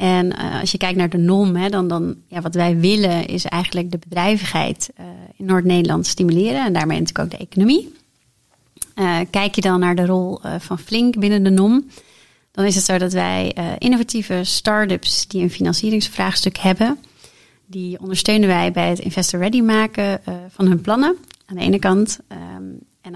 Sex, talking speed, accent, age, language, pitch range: female, 190 wpm, Dutch, 30-49, Dutch, 175-200 Hz